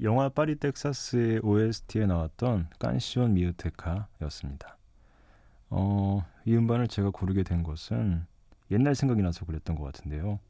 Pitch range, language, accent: 85-105 Hz, Korean, native